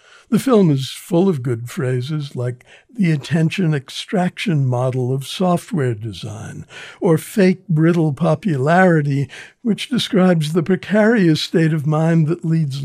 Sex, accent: male, American